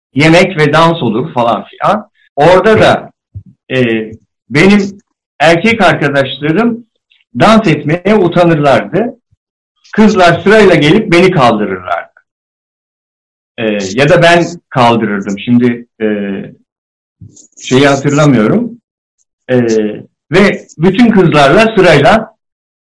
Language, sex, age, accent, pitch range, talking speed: Turkish, male, 60-79, native, 125-180 Hz, 90 wpm